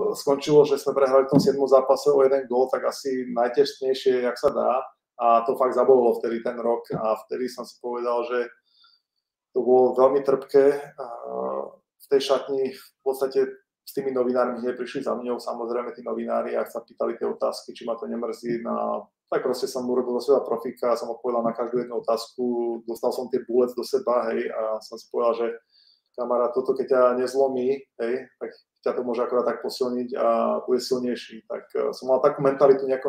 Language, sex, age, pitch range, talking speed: Czech, male, 20-39, 120-145 Hz, 190 wpm